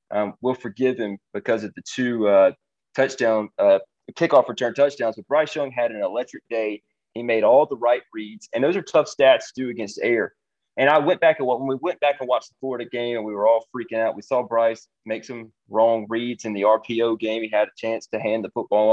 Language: English